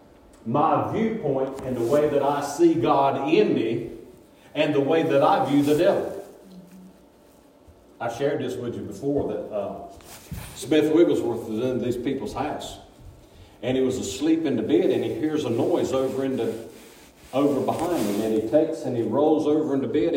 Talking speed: 180 wpm